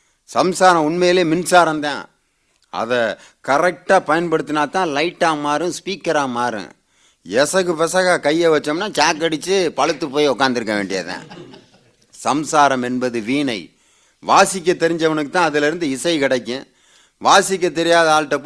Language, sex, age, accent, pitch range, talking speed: Tamil, male, 30-49, native, 120-165 Hz, 110 wpm